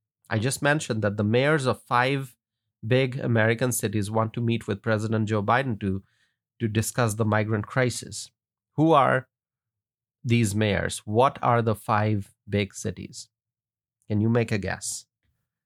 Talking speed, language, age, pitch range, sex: 150 wpm, English, 30-49, 110-135 Hz, male